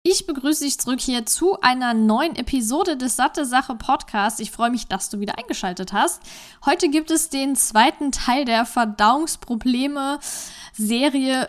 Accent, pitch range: German, 225-275 Hz